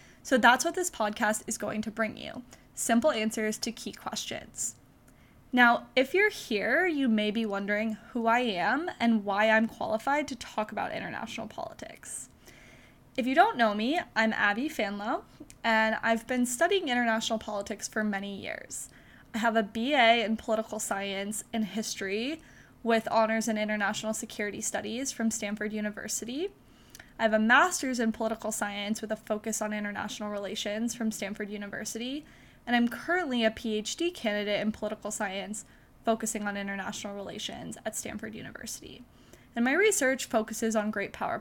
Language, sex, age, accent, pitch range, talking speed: English, female, 10-29, American, 215-250 Hz, 160 wpm